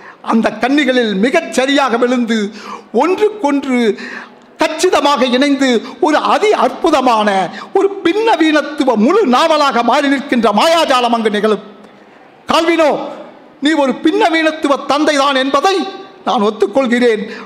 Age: 60-79